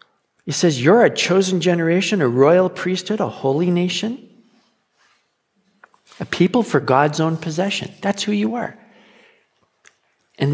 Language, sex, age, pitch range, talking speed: English, male, 50-69, 140-200 Hz, 130 wpm